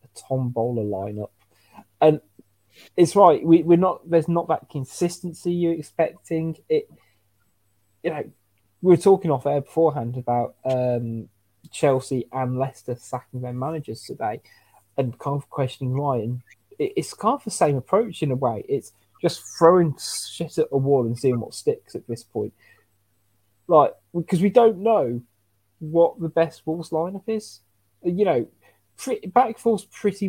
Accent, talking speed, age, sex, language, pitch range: British, 155 wpm, 20-39, male, English, 110-160 Hz